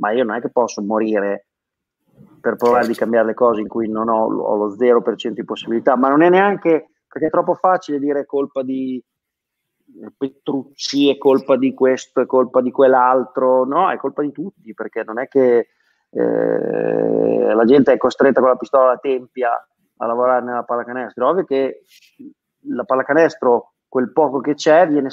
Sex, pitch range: male, 120-155 Hz